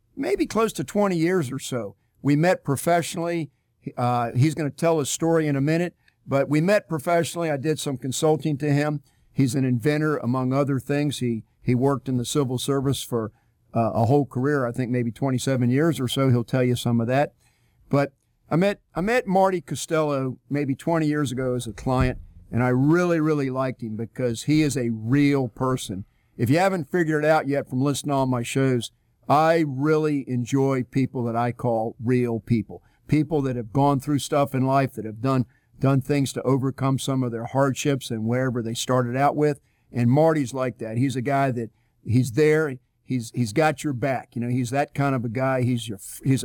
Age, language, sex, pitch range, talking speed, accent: 50-69, English, male, 120-150 Hz, 205 wpm, American